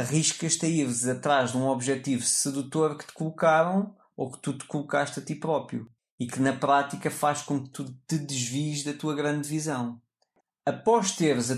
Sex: male